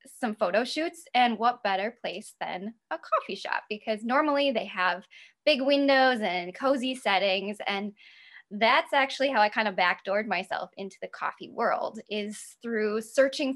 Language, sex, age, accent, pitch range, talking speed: English, female, 10-29, American, 200-250 Hz, 160 wpm